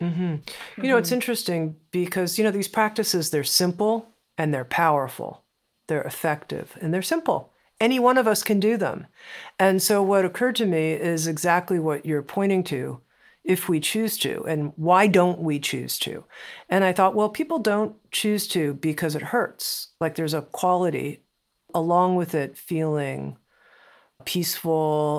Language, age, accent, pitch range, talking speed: English, 50-69, American, 150-185 Hz, 165 wpm